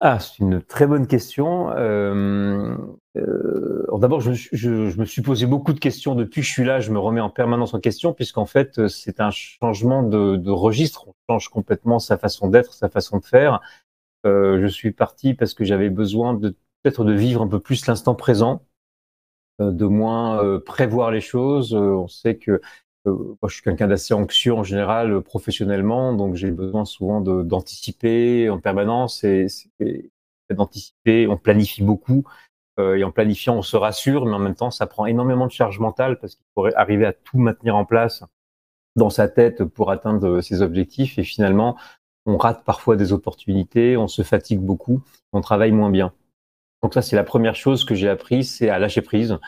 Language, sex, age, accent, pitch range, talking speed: French, male, 30-49, French, 100-120 Hz, 195 wpm